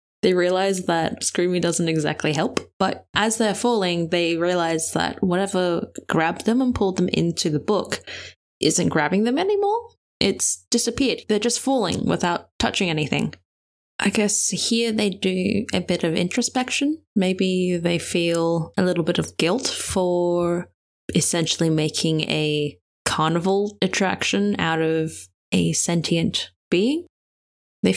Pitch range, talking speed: 160-205 Hz, 135 wpm